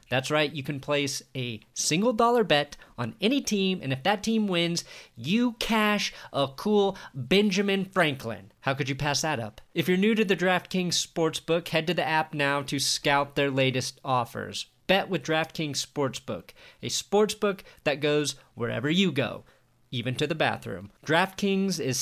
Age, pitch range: 40-59, 135-185 Hz